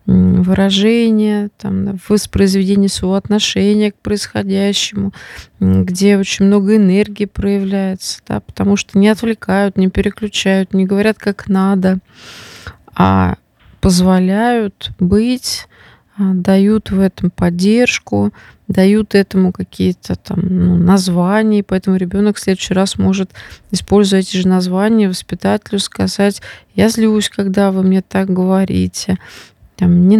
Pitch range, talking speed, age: 185-210 Hz, 105 wpm, 20-39